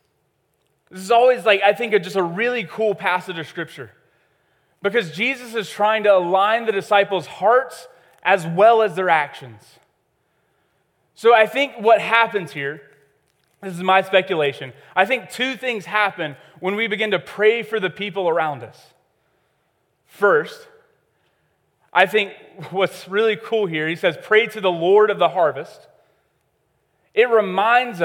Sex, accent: male, American